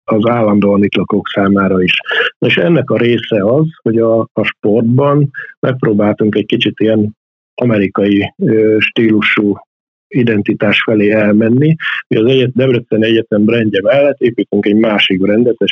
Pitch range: 100-120 Hz